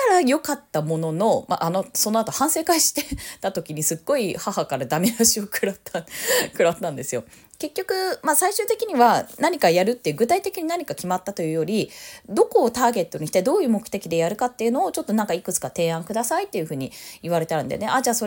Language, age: Japanese, 20-39